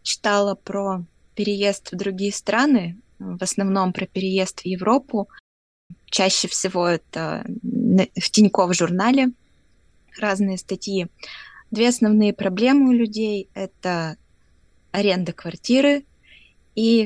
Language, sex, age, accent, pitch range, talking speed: Russian, female, 20-39, native, 185-215 Hz, 100 wpm